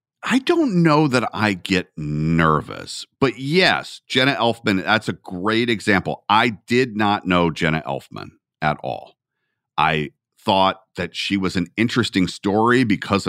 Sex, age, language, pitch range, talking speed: male, 40-59, English, 85-115 Hz, 145 wpm